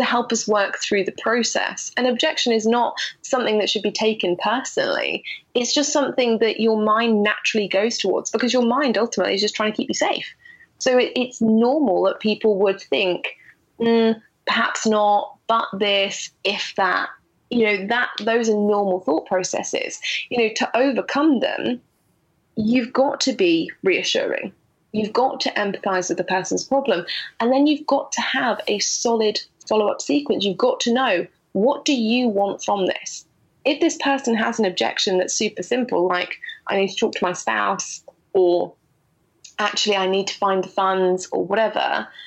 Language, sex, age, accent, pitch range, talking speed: English, female, 20-39, British, 195-255 Hz, 175 wpm